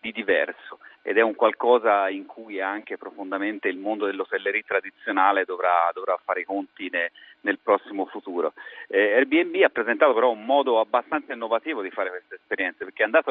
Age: 40-59